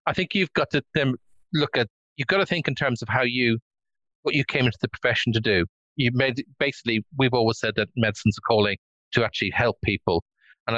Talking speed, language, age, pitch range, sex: 225 wpm, English, 40-59, 115-140 Hz, male